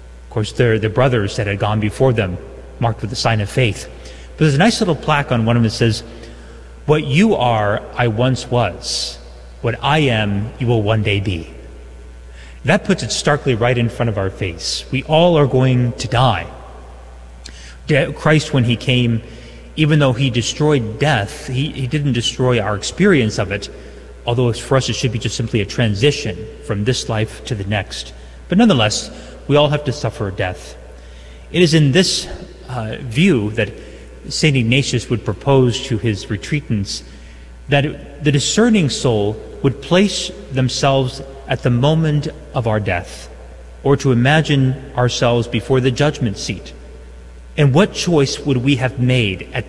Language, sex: English, male